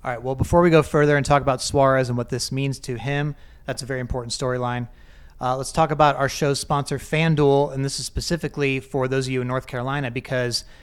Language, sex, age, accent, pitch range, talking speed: English, male, 30-49, American, 130-150 Hz, 225 wpm